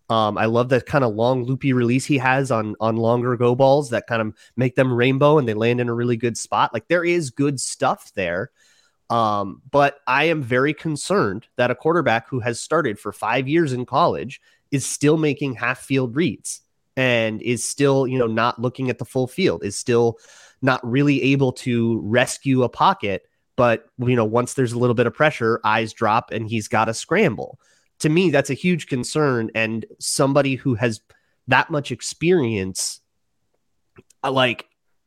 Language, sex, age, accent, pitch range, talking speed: English, male, 30-49, American, 115-145 Hz, 190 wpm